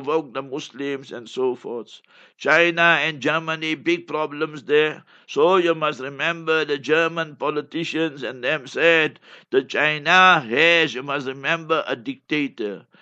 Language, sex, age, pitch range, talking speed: English, male, 60-79, 150-180 Hz, 135 wpm